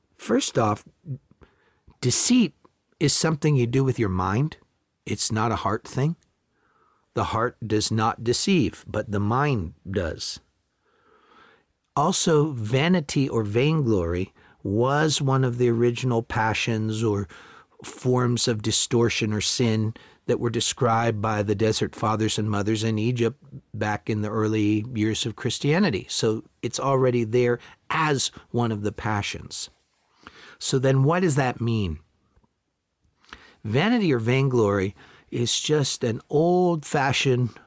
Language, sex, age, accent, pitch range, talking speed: English, male, 50-69, American, 110-135 Hz, 125 wpm